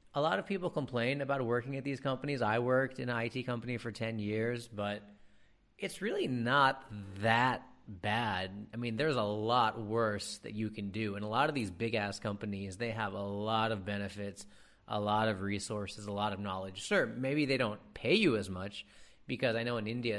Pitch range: 105-125 Hz